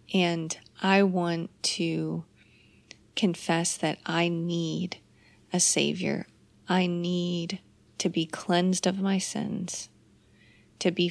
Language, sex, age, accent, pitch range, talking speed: English, female, 30-49, American, 170-190 Hz, 110 wpm